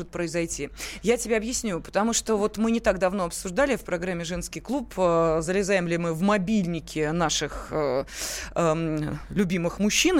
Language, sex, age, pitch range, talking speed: Russian, female, 20-39, 180-230 Hz, 160 wpm